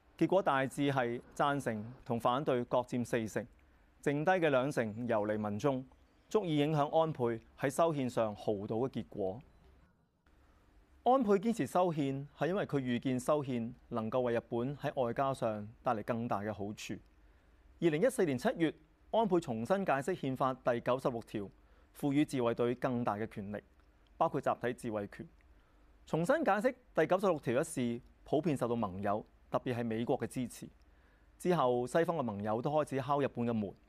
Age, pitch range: 30-49, 110-145 Hz